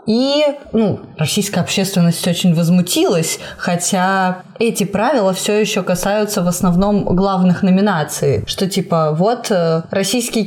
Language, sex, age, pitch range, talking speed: Russian, female, 20-39, 180-225 Hz, 115 wpm